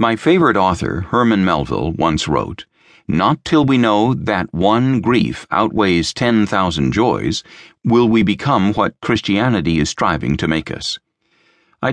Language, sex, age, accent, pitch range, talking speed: English, male, 60-79, American, 90-115 Hz, 145 wpm